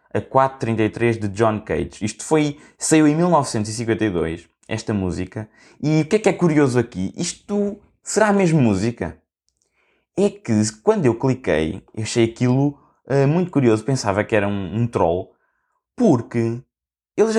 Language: Portuguese